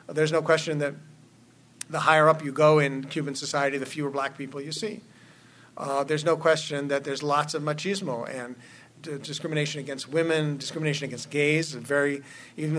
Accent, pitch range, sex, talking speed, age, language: American, 135-160 Hz, male, 180 wpm, 50-69, English